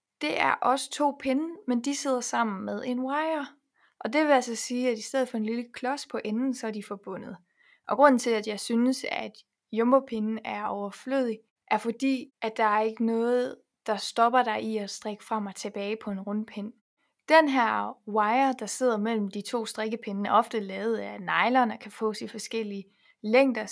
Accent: native